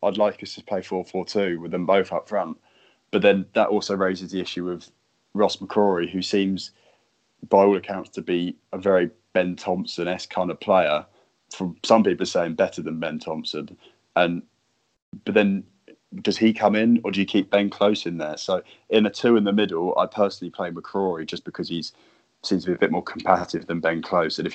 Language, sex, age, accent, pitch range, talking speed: English, male, 20-39, British, 85-100 Hz, 215 wpm